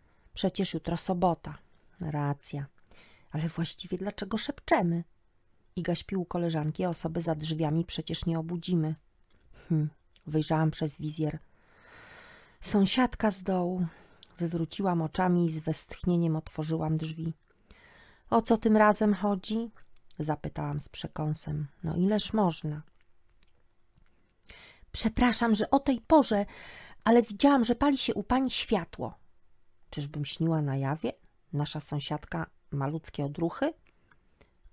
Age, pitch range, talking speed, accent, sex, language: 40-59, 150-215 Hz, 115 wpm, native, female, Polish